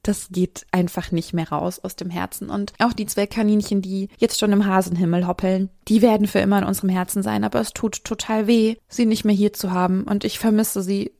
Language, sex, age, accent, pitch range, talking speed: German, female, 20-39, German, 190-225 Hz, 230 wpm